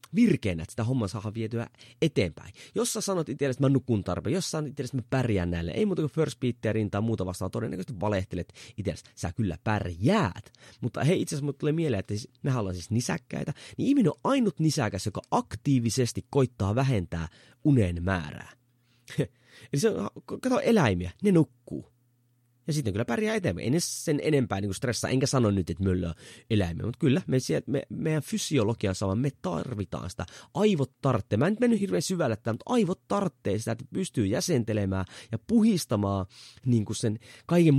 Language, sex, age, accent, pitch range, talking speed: Finnish, male, 30-49, native, 100-140 Hz, 185 wpm